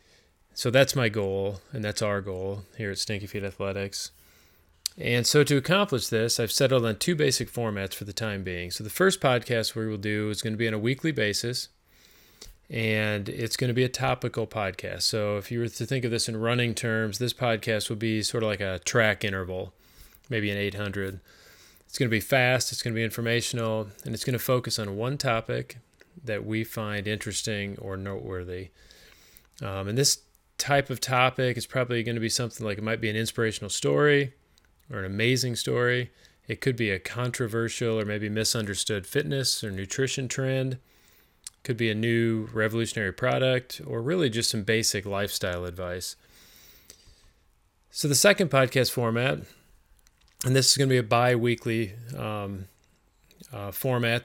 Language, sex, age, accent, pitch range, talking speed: English, male, 30-49, American, 100-125 Hz, 180 wpm